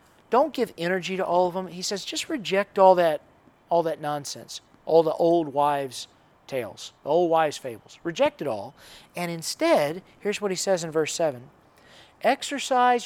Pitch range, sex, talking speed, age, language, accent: 170-225 Hz, male, 175 wpm, 40-59, English, American